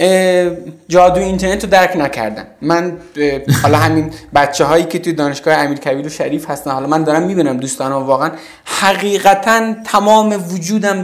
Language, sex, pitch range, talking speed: Persian, male, 160-205 Hz, 140 wpm